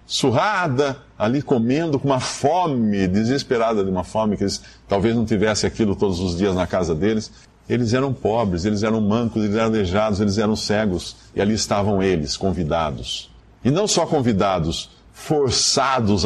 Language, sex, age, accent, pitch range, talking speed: Portuguese, male, 50-69, Brazilian, 105-170 Hz, 160 wpm